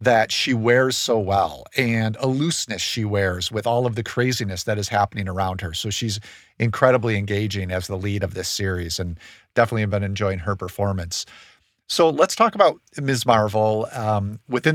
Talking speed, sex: 185 wpm, male